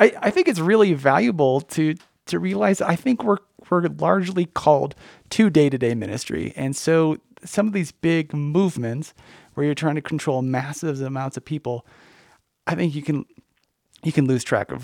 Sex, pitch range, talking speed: male, 130-155 Hz, 170 wpm